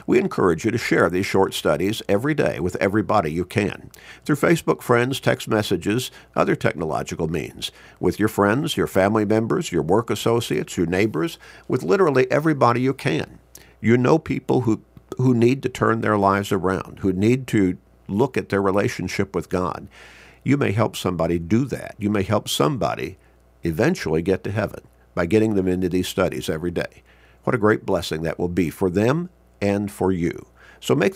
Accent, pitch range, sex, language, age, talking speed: American, 90-120 Hz, male, English, 50-69, 180 wpm